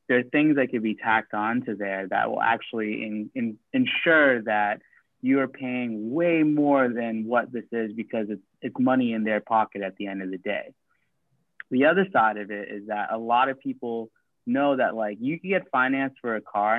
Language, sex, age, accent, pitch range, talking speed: English, male, 20-39, American, 105-135 Hz, 205 wpm